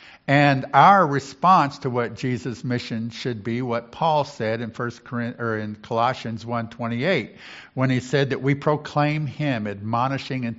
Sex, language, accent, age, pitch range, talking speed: male, English, American, 50-69, 115-150 Hz, 160 wpm